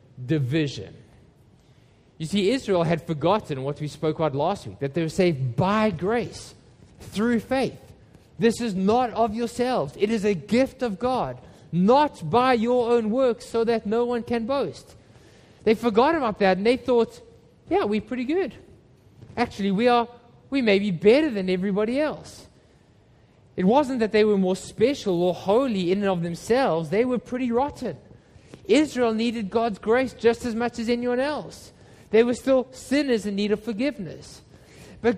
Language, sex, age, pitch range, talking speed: English, male, 20-39, 150-235 Hz, 170 wpm